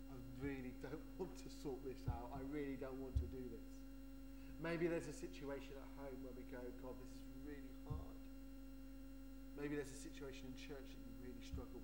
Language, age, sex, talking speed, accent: English, 30-49, male, 195 wpm, British